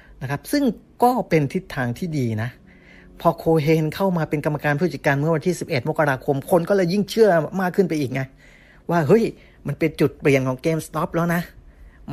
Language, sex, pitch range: Thai, male, 135-175 Hz